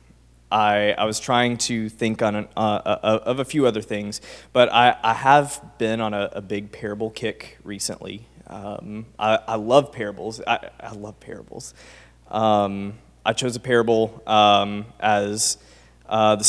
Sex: male